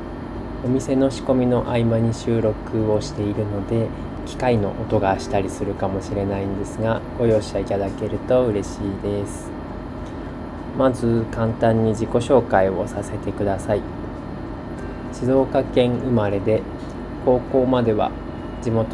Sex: male